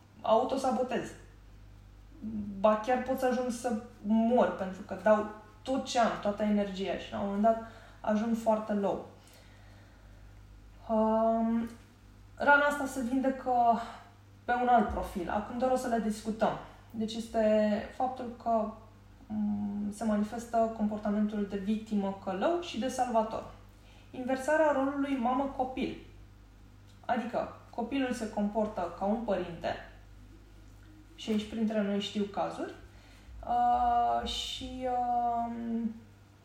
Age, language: 20-39, Romanian